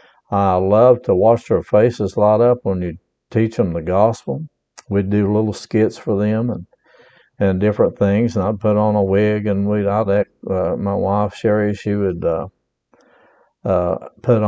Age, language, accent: 60-79, English, American